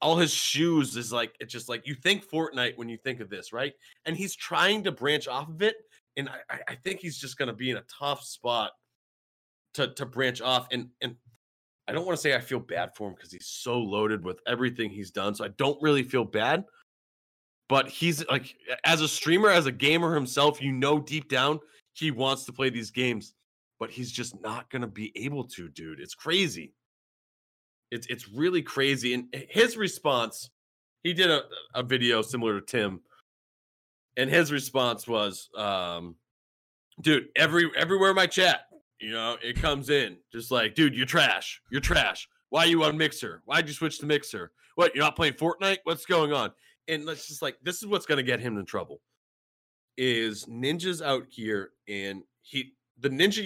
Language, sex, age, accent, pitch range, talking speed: English, male, 30-49, American, 120-160 Hz, 200 wpm